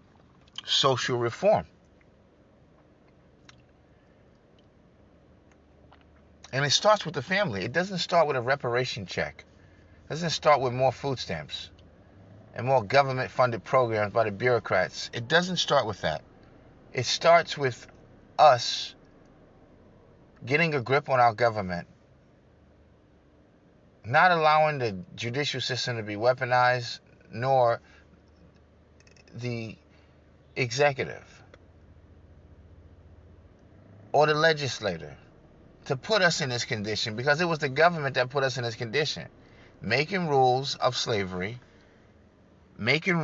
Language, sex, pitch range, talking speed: English, male, 95-140 Hz, 110 wpm